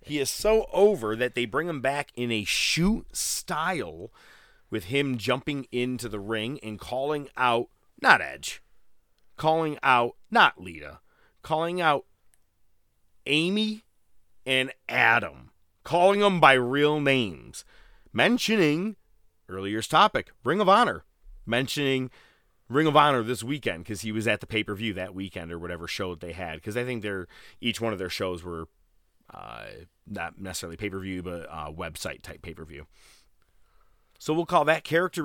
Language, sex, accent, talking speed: English, male, American, 155 wpm